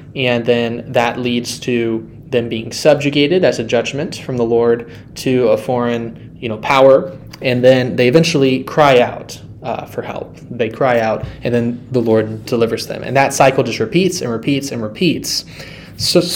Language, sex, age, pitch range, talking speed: English, male, 20-39, 115-145 Hz, 175 wpm